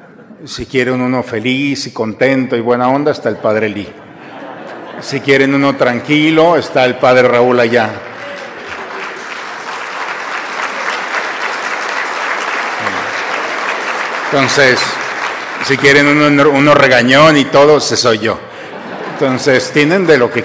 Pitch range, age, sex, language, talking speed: 115-140 Hz, 50-69, male, Spanish, 110 wpm